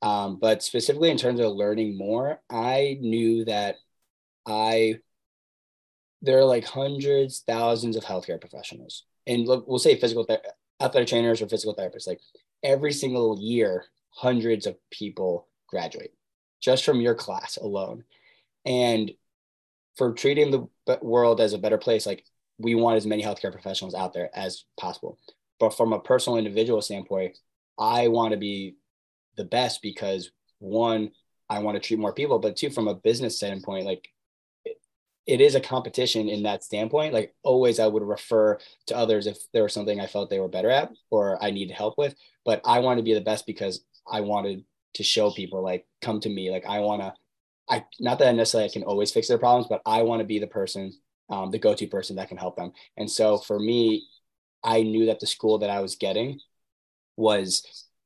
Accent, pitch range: American, 105-125 Hz